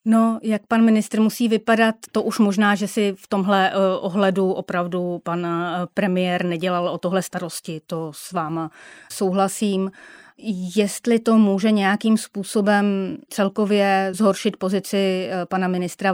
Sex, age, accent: female, 30-49, native